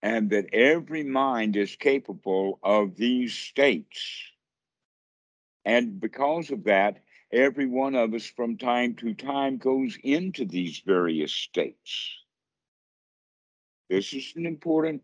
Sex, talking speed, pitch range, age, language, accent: male, 120 wpm, 105-135 Hz, 60-79, English, American